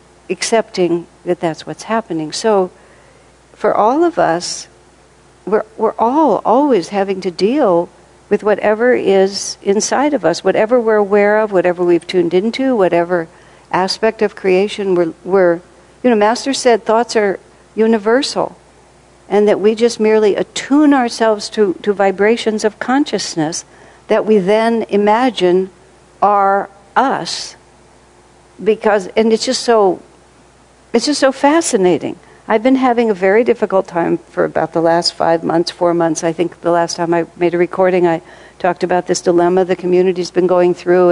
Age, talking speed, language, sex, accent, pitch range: 60-79, 155 wpm, English, female, American, 175-240 Hz